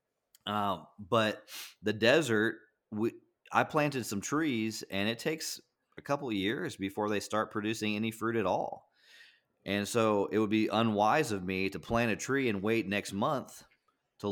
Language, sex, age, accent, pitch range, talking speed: English, male, 30-49, American, 95-115 Hz, 175 wpm